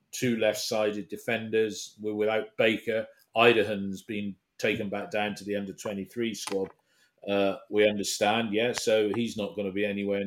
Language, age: English, 40-59